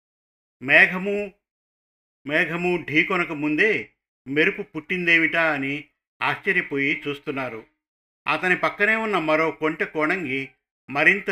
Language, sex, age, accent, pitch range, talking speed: Telugu, male, 50-69, native, 145-180 Hz, 85 wpm